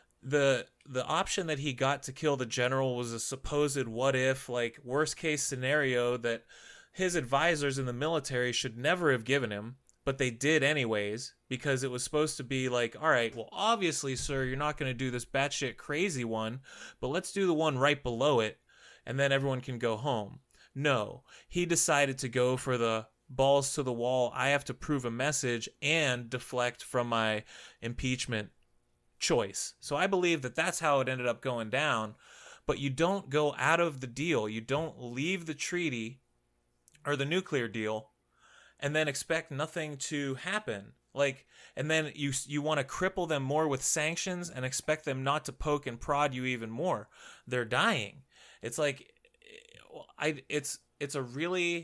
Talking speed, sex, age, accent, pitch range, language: 185 wpm, male, 30-49, American, 125-150 Hz, English